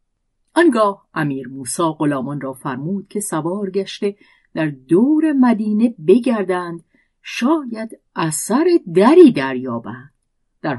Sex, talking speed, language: female, 100 wpm, Persian